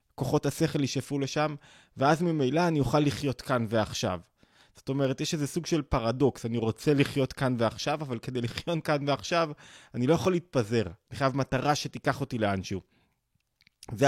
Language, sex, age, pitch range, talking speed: Hebrew, male, 20-39, 110-145 Hz, 165 wpm